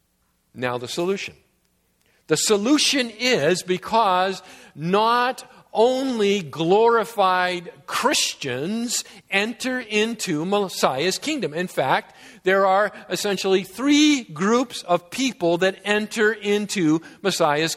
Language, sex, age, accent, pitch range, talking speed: English, male, 50-69, American, 165-220 Hz, 95 wpm